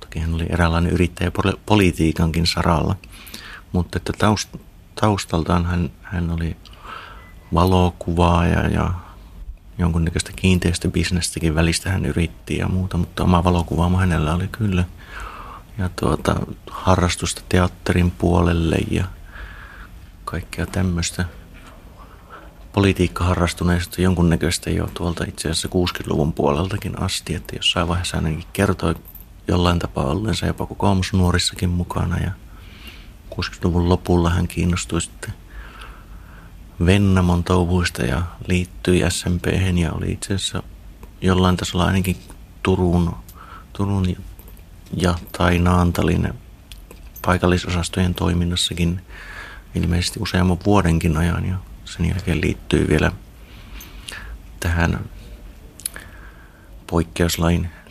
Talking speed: 95 wpm